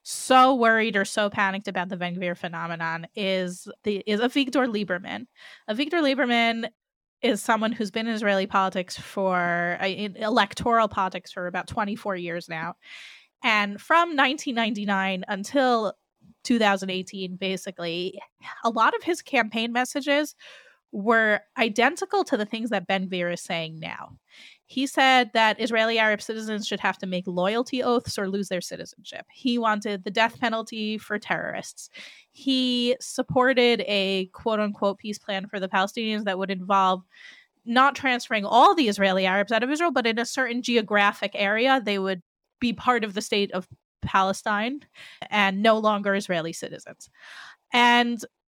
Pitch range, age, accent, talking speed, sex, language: 190-240 Hz, 20-39, American, 150 wpm, female, English